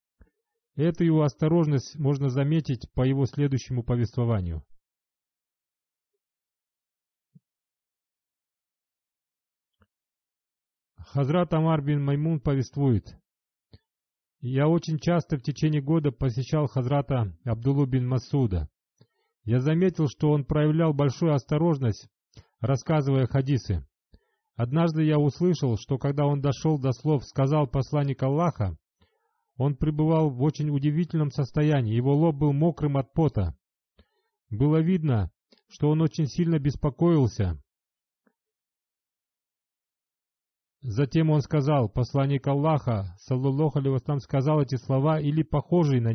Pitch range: 130-155 Hz